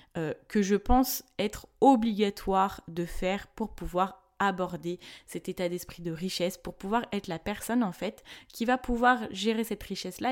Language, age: French, 20-39